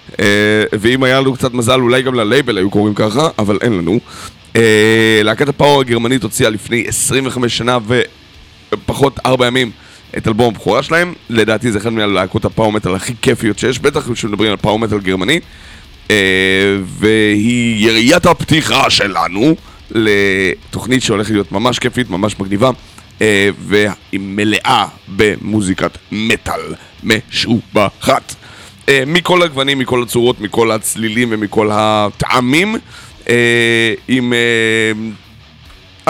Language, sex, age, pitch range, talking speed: Hebrew, male, 30-49, 105-125 Hz, 120 wpm